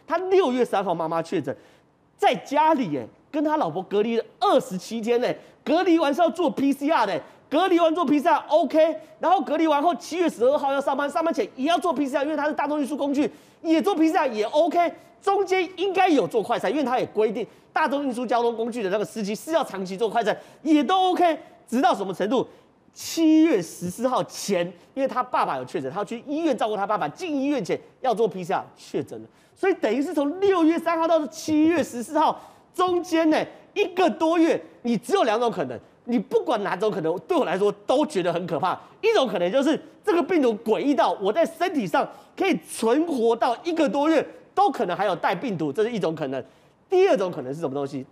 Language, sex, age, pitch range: Chinese, male, 30-49, 225-330 Hz